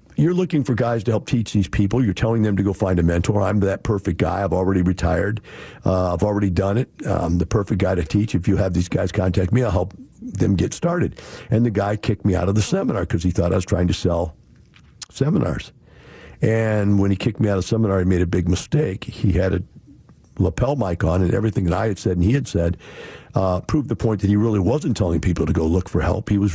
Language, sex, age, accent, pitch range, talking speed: English, male, 50-69, American, 90-110 Hz, 255 wpm